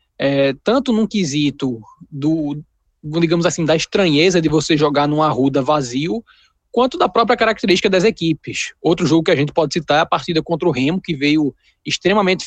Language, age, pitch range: Portuguese, 20-39, 145-185 Hz